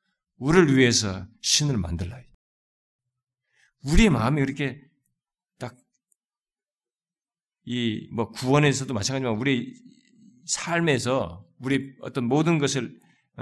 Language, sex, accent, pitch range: Korean, male, native, 95-140 Hz